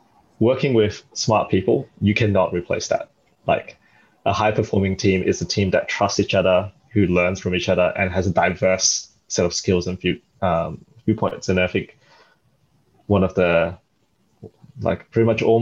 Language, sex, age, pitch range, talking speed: English, male, 20-39, 90-105 Hz, 175 wpm